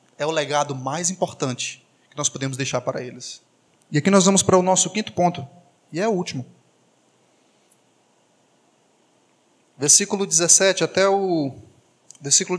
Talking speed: 140 wpm